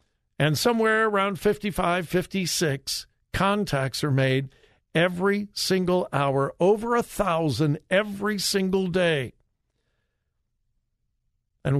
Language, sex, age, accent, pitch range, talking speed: English, male, 60-79, American, 135-180 Hz, 90 wpm